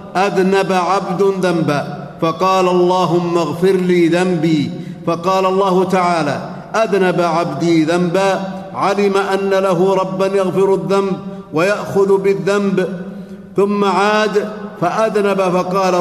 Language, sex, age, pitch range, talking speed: Arabic, male, 50-69, 175-195 Hz, 95 wpm